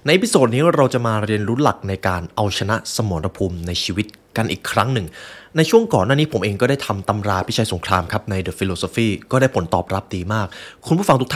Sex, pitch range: male, 95-130 Hz